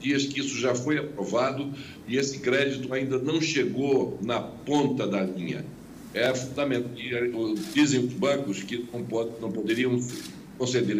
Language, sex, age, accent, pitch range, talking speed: Portuguese, male, 60-79, Brazilian, 125-150 Hz, 135 wpm